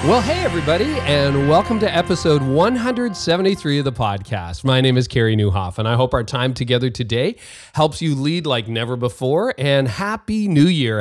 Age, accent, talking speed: 30-49, American, 180 wpm